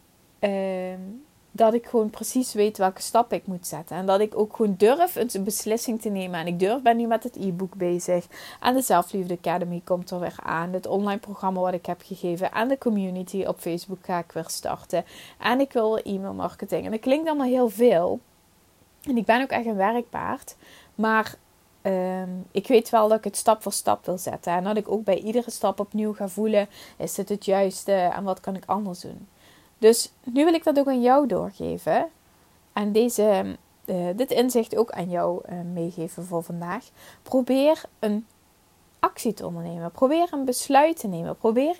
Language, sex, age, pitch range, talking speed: Dutch, female, 20-39, 185-245 Hz, 195 wpm